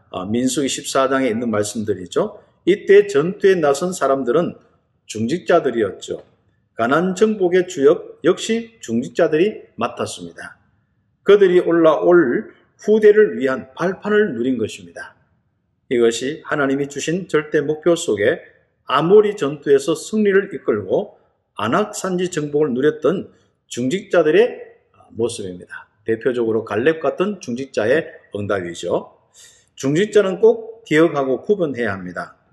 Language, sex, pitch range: Korean, male, 135-225 Hz